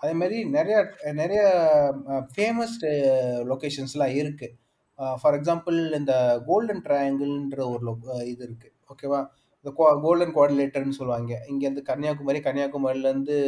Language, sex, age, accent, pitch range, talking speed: Tamil, male, 30-49, native, 130-150 Hz, 105 wpm